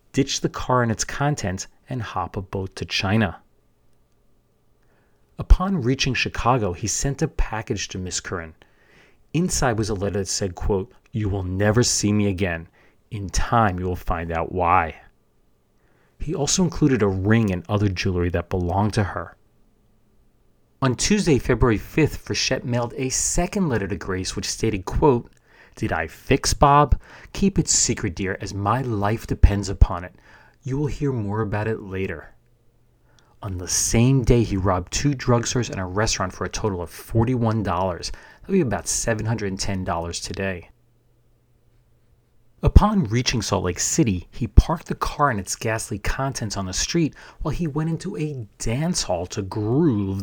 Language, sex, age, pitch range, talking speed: English, male, 30-49, 95-125 Hz, 160 wpm